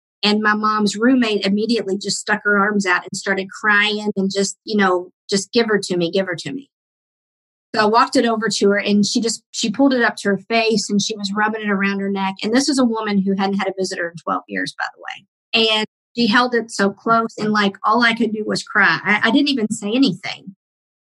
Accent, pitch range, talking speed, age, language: American, 195-230 Hz, 250 wpm, 50-69, English